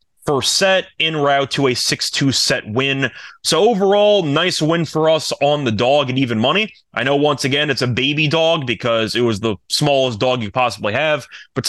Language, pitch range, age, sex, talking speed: English, 125-155 Hz, 20-39, male, 200 wpm